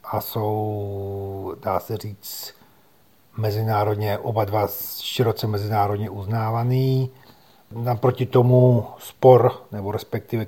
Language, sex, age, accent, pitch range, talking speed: Czech, male, 40-59, native, 105-120 Hz, 90 wpm